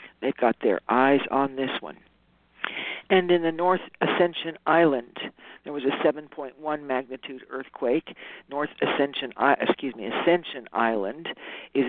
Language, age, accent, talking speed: English, 60-79, American, 130 wpm